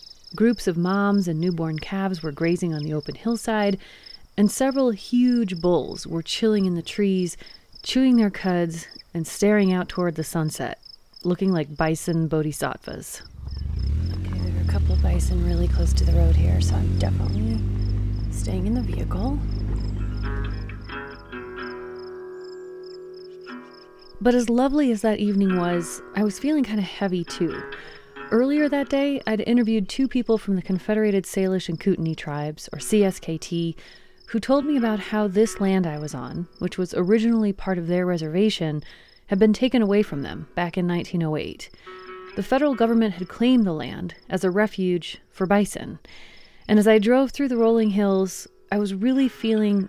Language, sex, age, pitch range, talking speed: English, female, 30-49, 150-220 Hz, 160 wpm